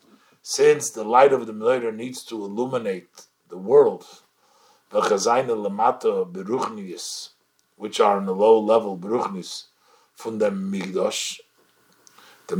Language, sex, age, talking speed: English, male, 50-69, 105 wpm